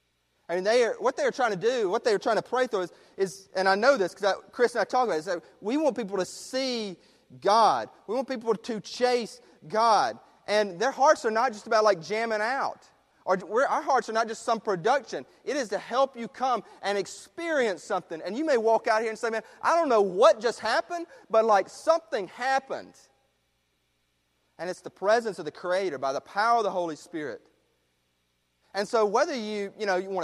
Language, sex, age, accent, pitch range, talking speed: English, male, 30-49, American, 180-245 Hz, 220 wpm